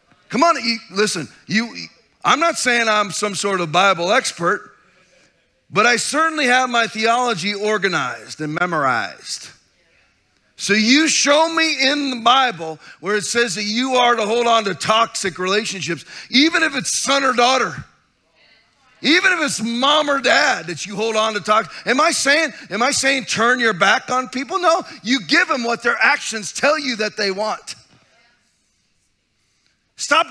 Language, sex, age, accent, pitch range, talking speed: English, male, 40-59, American, 210-260 Hz, 165 wpm